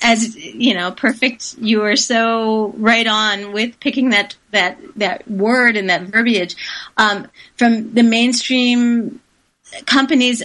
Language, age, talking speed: English, 30-49, 130 wpm